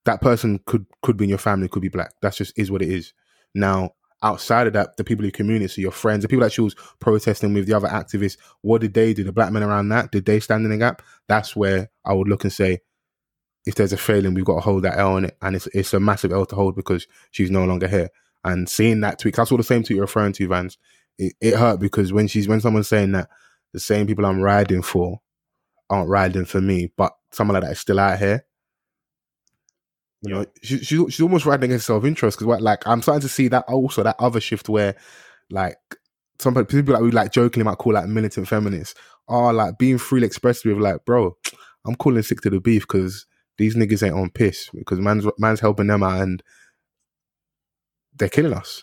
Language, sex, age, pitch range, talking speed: English, male, 20-39, 95-115 Hz, 235 wpm